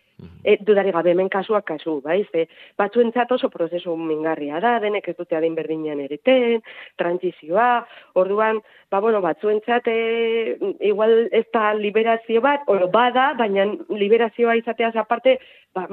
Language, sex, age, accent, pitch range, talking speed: Spanish, female, 30-49, Spanish, 180-240 Hz, 165 wpm